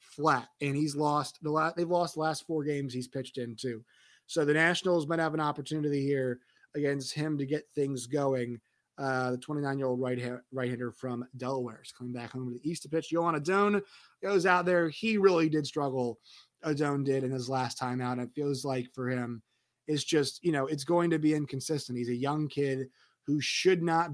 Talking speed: 215 wpm